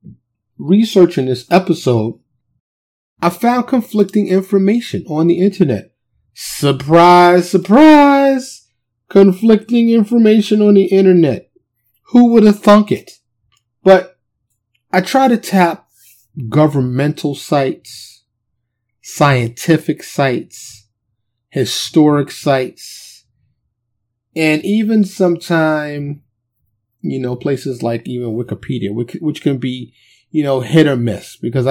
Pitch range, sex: 115-180 Hz, male